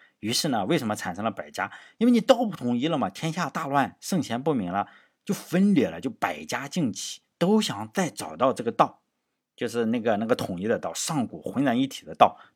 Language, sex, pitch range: Chinese, male, 110-175 Hz